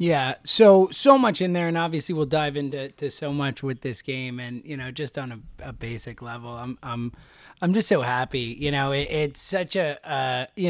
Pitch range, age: 150-220 Hz, 30-49